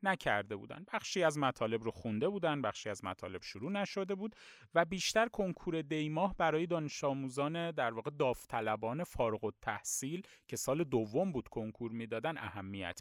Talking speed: 155 wpm